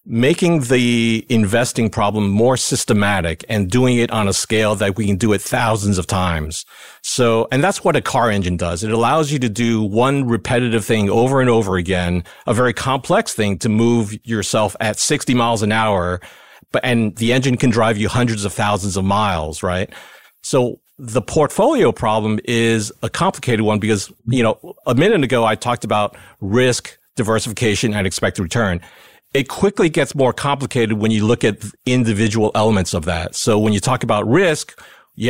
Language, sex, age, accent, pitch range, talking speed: English, male, 40-59, American, 100-120 Hz, 180 wpm